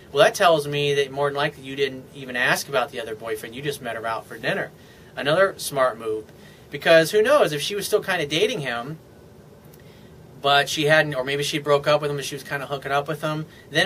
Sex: male